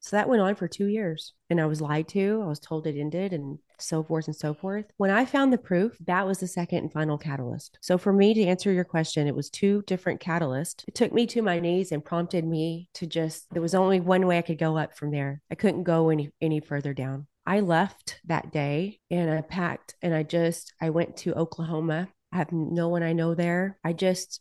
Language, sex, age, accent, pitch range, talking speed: English, female, 30-49, American, 160-195 Hz, 245 wpm